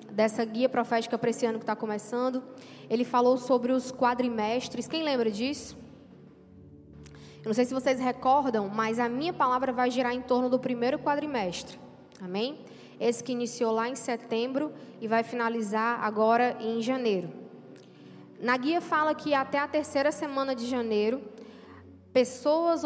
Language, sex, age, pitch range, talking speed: Portuguese, female, 10-29, 225-260 Hz, 150 wpm